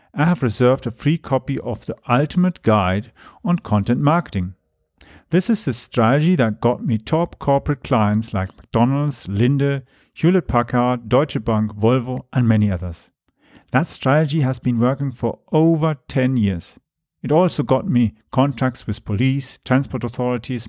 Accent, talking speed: German, 150 wpm